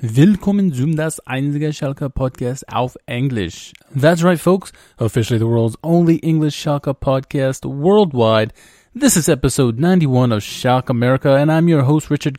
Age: 20-39